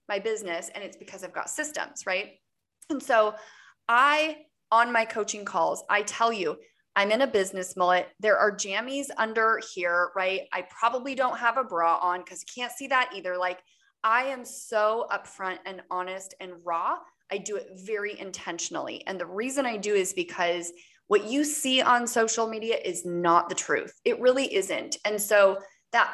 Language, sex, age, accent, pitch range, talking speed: English, female, 20-39, American, 185-255 Hz, 185 wpm